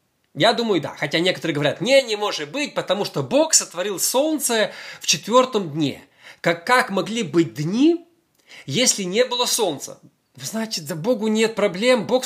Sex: male